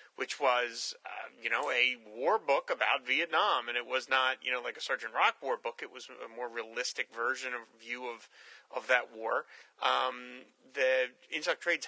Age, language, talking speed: 30-49, English, 190 wpm